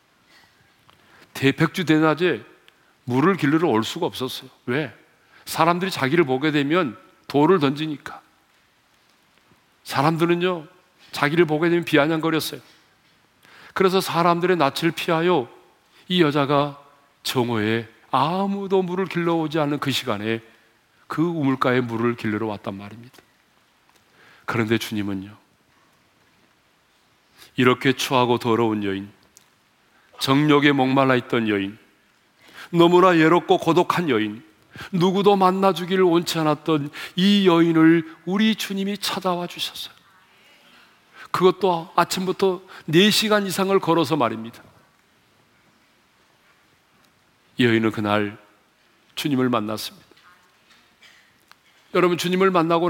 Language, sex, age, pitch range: Korean, male, 40-59, 125-180 Hz